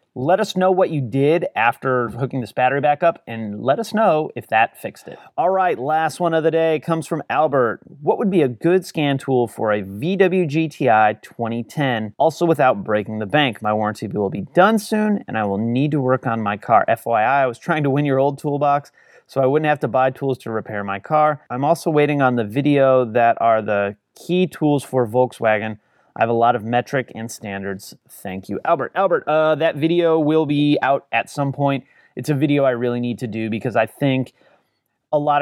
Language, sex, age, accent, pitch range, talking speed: English, male, 30-49, American, 115-155 Hz, 215 wpm